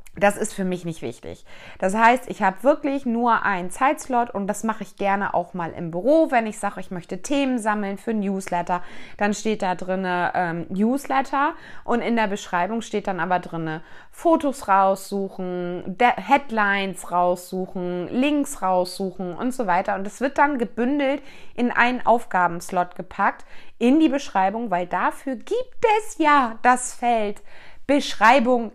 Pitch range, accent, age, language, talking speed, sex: 190-260 Hz, German, 20-39, German, 160 wpm, female